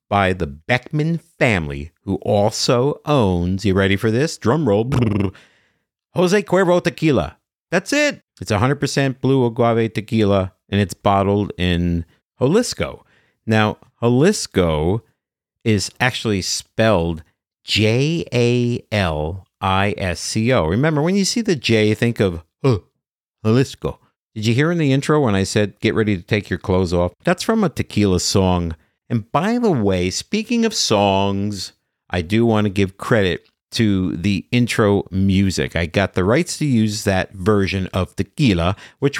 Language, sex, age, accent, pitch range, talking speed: English, male, 50-69, American, 95-130 Hz, 140 wpm